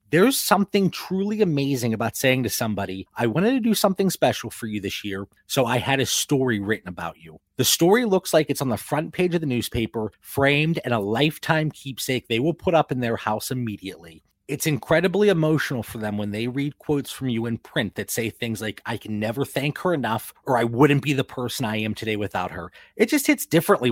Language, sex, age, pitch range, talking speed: English, male, 30-49, 115-160 Hz, 225 wpm